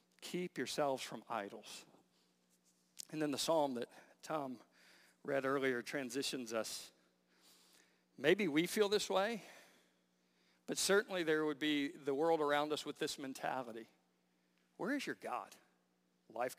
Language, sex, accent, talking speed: English, male, American, 130 wpm